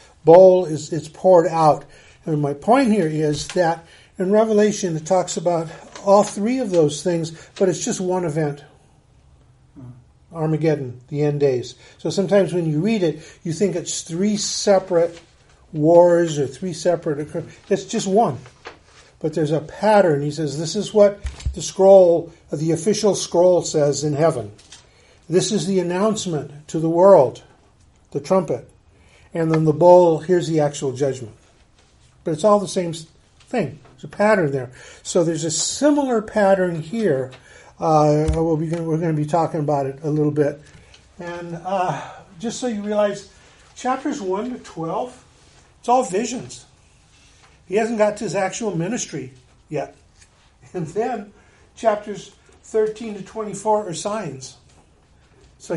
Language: English